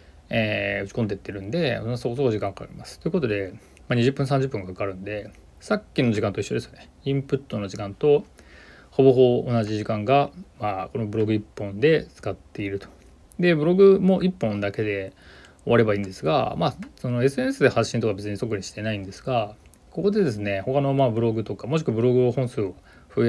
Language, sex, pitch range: Japanese, male, 100-130 Hz